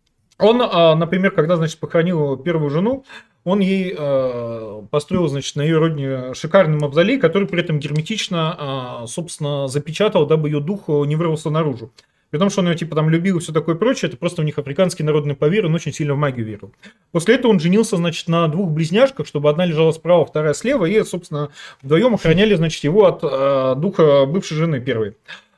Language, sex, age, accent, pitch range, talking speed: Russian, male, 30-49, native, 150-200 Hz, 185 wpm